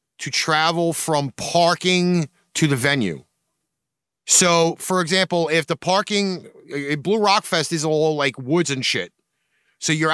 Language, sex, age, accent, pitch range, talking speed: English, male, 30-49, American, 160-205 Hz, 140 wpm